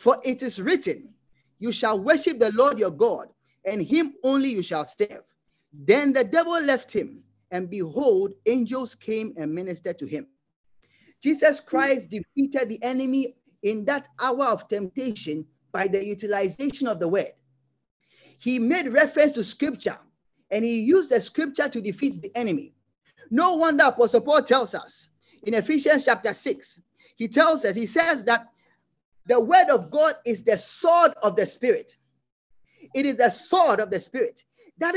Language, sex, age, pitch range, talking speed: English, male, 30-49, 215-315 Hz, 160 wpm